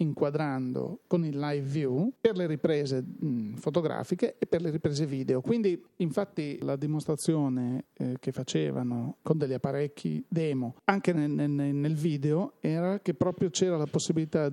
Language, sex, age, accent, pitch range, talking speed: Italian, male, 40-59, native, 140-165 Hz, 135 wpm